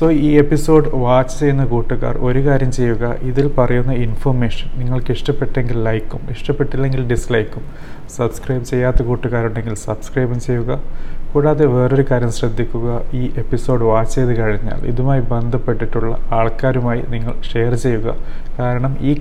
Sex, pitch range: male, 115-135 Hz